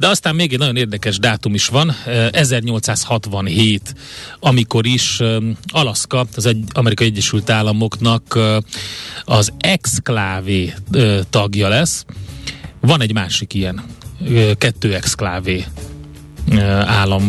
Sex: male